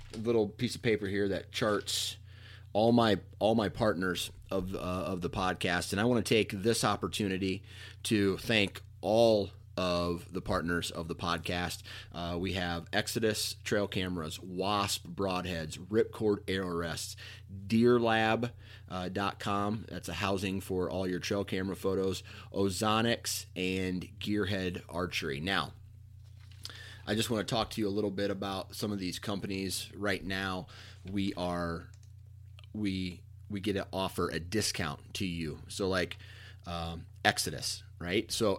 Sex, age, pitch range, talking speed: male, 30-49, 95-105 Hz, 150 wpm